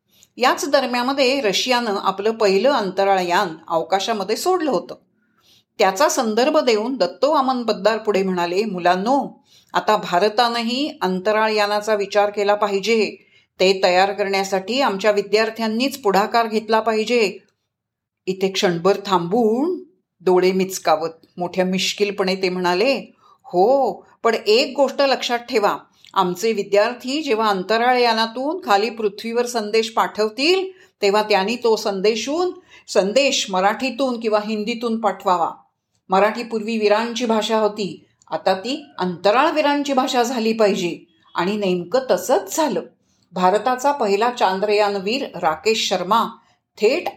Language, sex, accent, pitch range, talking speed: Marathi, female, native, 195-245 Hz, 105 wpm